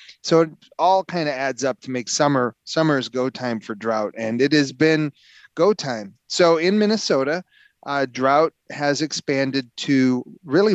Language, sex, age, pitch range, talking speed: English, male, 30-49, 120-155 Hz, 165 wpm